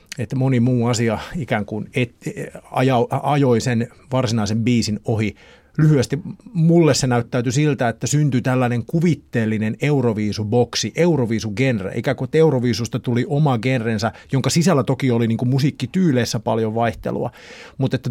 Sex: male